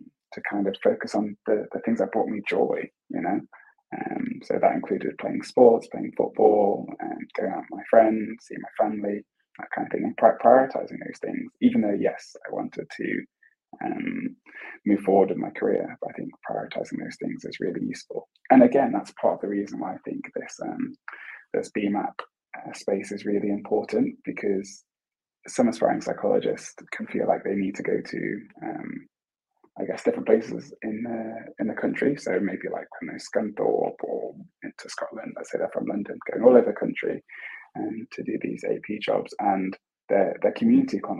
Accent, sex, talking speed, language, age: British, male, 190 wpm, English, 20-39